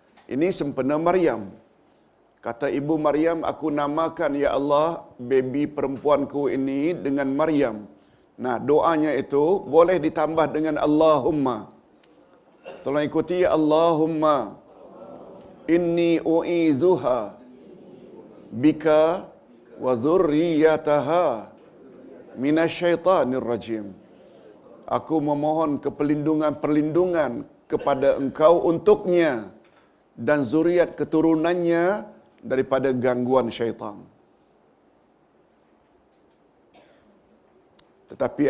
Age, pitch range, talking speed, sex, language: 50-69, 135-165 Hz, 75 wpm, male, Malayalam